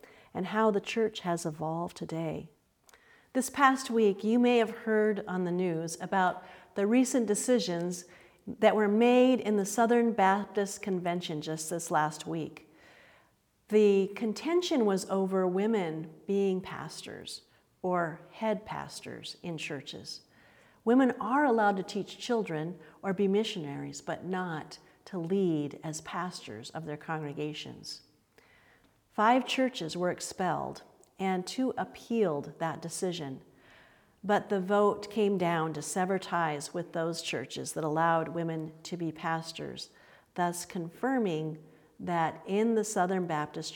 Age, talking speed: 50-69, 130 wpm